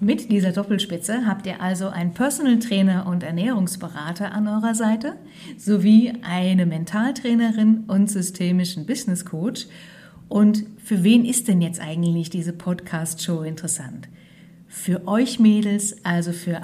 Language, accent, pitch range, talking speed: German, German, 175-205 Hz, 130 wpm